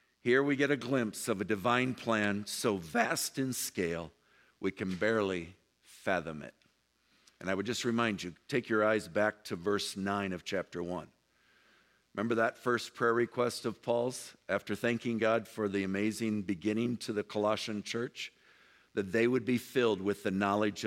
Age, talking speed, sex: 50-69, 175 wpm, male